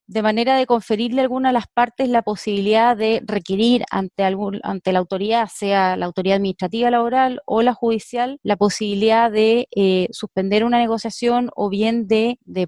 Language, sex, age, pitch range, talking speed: Spanish, female, 30-49, 205-240 Hz, 175 wpm